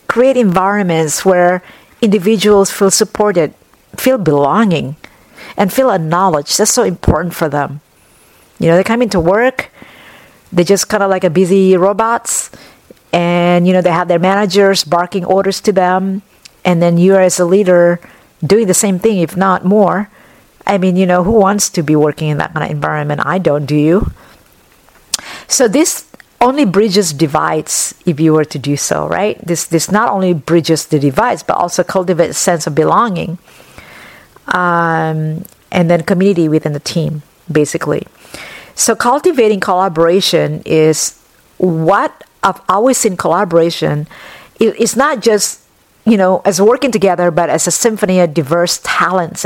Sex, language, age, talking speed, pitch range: female, English, 50-69, 160 wpm, 165-205 Hz